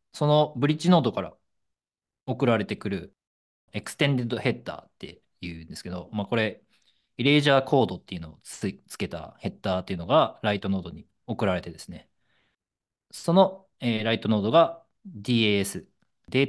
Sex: male